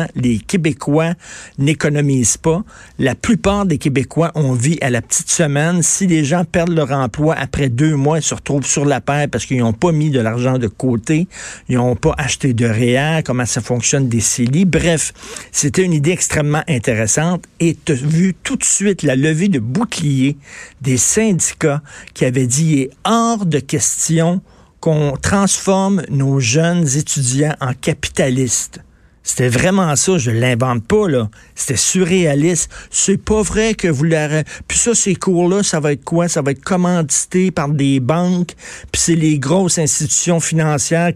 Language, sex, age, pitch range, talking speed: French, male, 50-69, 135-170 Hz, 175 wpm